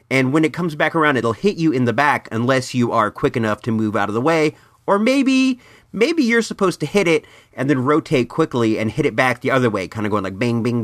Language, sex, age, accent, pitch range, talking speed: English, male, 40-59, American, 110-160 Hz, 265 wpm